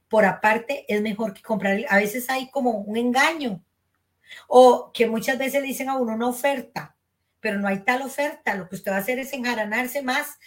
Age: 40-59